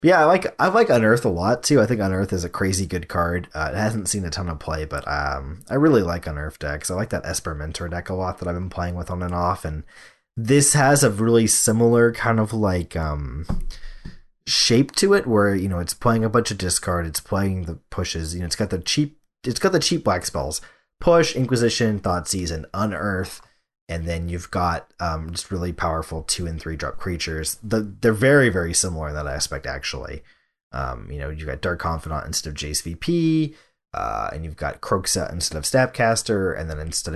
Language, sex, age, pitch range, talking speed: English, male, 30-49, 80-110 Hz, 220 wpm